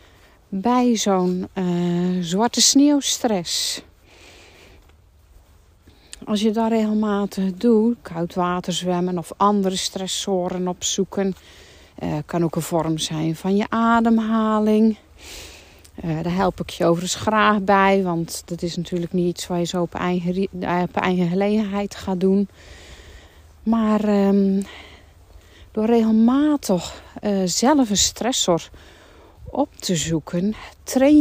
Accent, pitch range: Dutch, 155-210 Hz